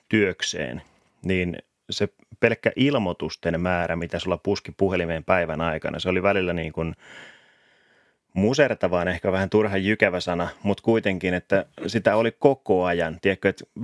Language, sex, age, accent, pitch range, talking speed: Finnish, male, 30-49, native, 85-110 Hz, 135 wpm